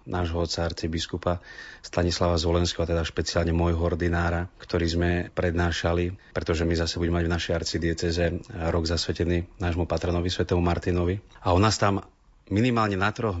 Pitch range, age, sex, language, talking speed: 85-95 Hz, 30-49, male, Slovak, 150 wpm